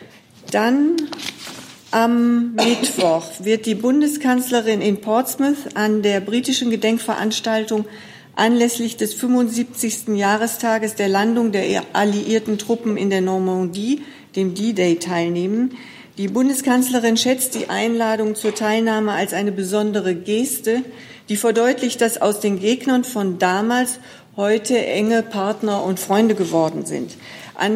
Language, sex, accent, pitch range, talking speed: German, female, German, 200-235 Hz, 115 wpm